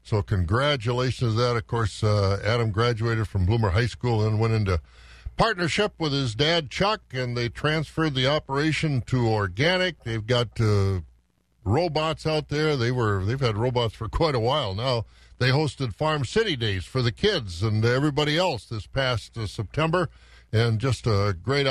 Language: English